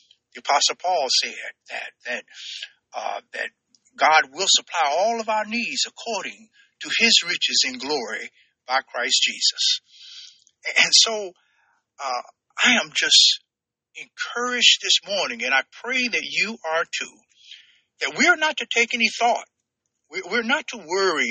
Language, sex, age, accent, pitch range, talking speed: English, male, 50-69, American, 180-295 Hz, 145 wpm